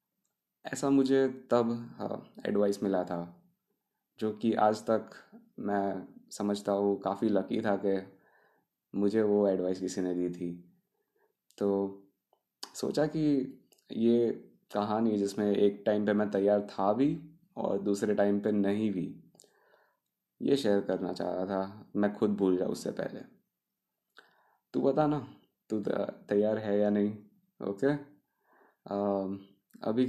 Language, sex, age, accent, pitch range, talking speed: Hindi, male, 20-39, native, 100-115 Hz, 135 wpm